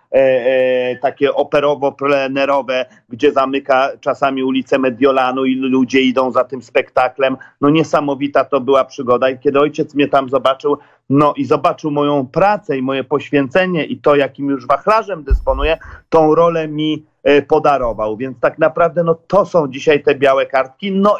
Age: 40-59